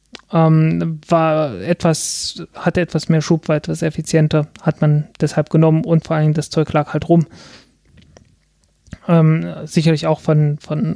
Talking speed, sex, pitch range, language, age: 150 wpm, male, 155-185 Hz, German, 20-39